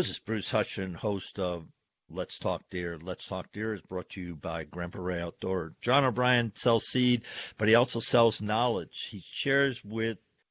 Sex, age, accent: male, 50-69, American